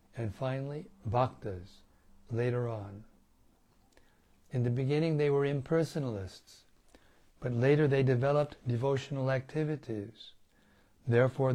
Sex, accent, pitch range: male, American, 125-150 Hz